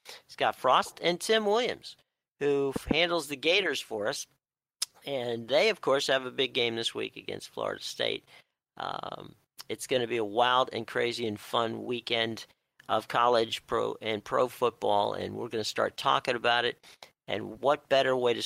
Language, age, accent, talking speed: English, 50-69, American, 180 wpm